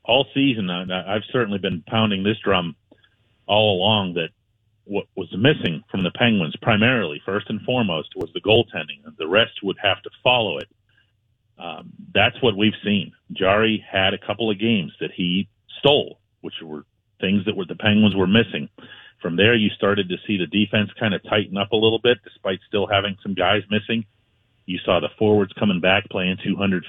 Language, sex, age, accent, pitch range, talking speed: English, male, 40-59, American, 100-140 Hz, 185 wpm